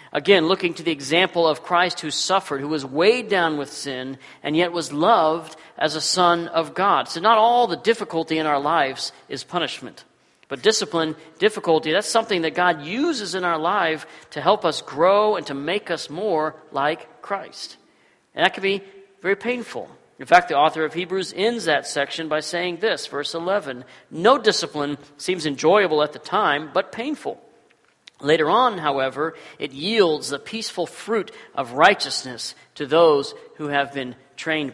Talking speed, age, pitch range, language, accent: 175 wpm, 40-59, 145-190 Hz, English, American